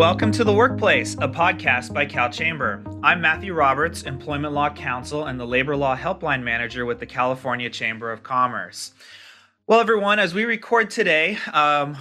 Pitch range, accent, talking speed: 120-150 Hz, American, 170 wpm